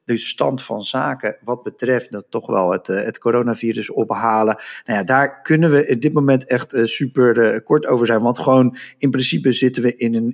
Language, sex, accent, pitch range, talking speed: Dutch, male, Dutch, 115-130 Hz, 195 wpm